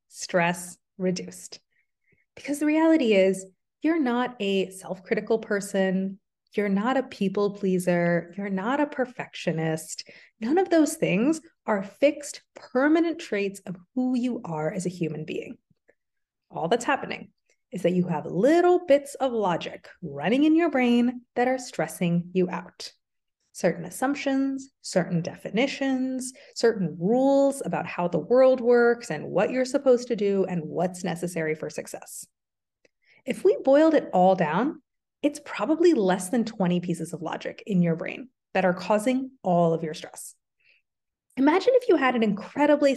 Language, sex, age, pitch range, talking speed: English, female, 30-49, 180-265 Hz, 150 wpm